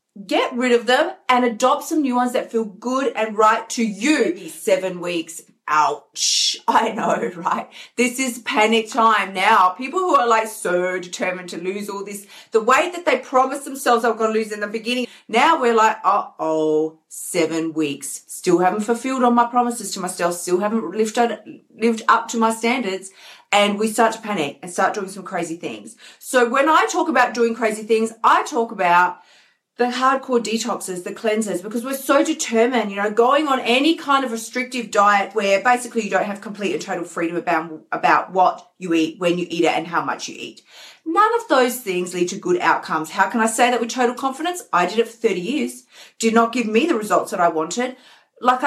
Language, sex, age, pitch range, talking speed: English, female, 40-59, 190-250 Hz, 205 wpm